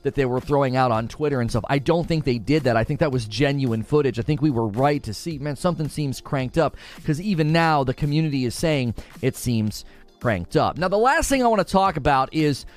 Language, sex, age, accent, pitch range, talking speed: English, male, 30-49, American, 120-160 Hz, 255 wpm